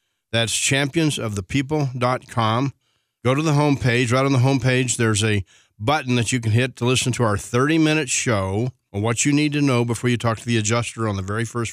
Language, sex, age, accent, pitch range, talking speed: English, male, 40-59, American, 110-130 Hz, 200 wpm